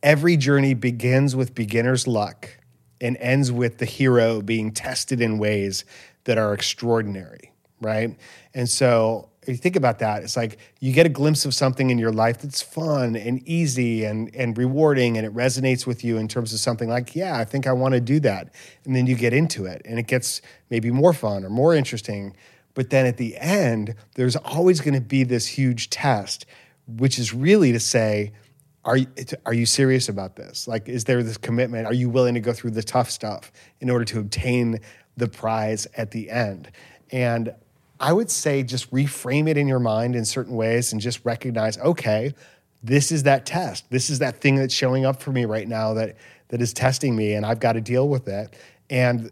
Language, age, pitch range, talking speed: English, 40-59, 115-135 Hz, 205 wpm